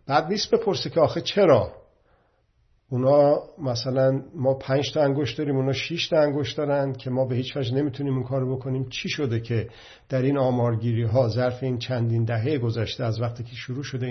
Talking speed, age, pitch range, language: 180 wpm, 50-69, 115-140 Hz, Persian